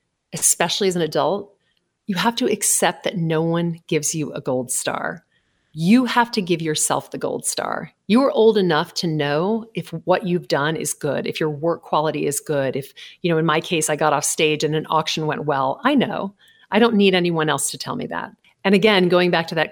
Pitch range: 155-205 Hz